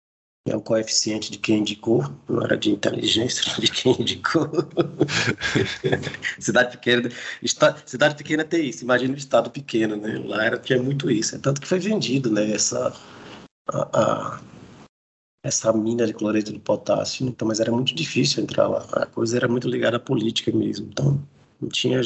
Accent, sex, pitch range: Brazilian, male, 110-140 Hz